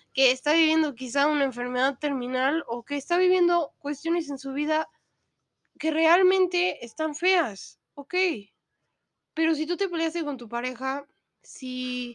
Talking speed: 145 wpm